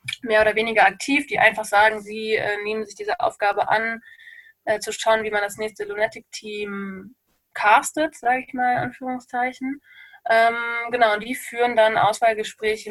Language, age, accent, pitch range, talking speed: German, 20-39, German, 210-245 Hz, 160 wpm